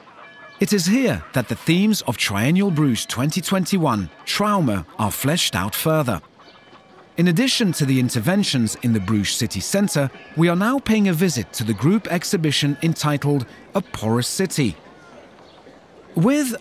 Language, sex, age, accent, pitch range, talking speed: Dutch, male, 40-59, British, 130-190 Hz, 145 wpm